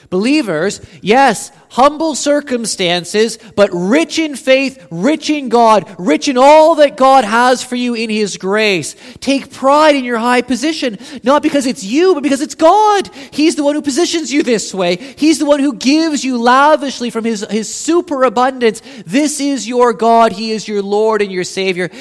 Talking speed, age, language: 180 wpm, 30-49, English